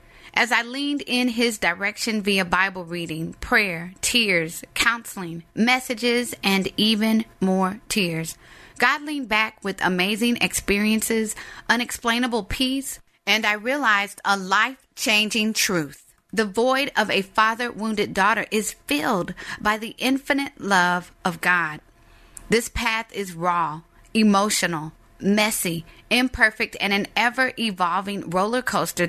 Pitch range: 190-255 Hz